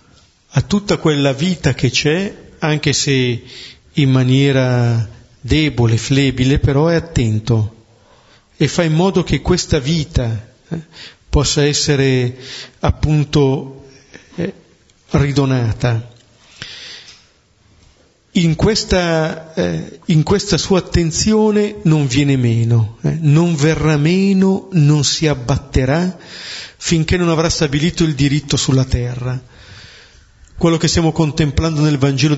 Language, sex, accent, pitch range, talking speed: Italian, male, native, 125-160 Hz, 105 wpm